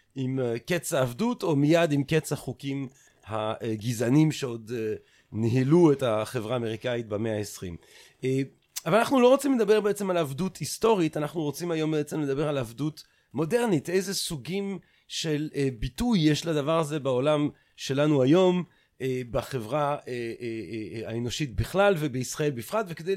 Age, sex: 40-59, male